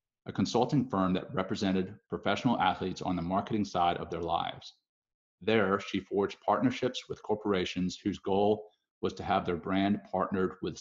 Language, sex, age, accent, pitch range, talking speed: English, male, 40-59, American, 95-120 Hz, 160 wpm